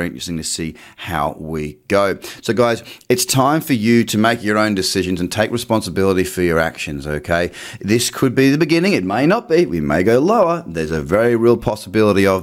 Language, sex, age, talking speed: English, male, 30-49, 210 wpm